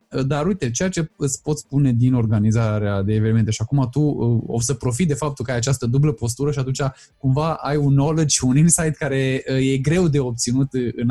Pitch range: 130-175 Hz